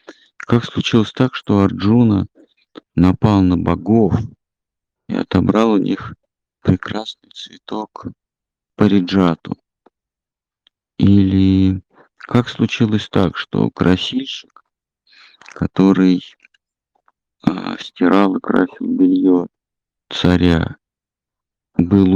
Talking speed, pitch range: 80 wpm, 90-105 Hz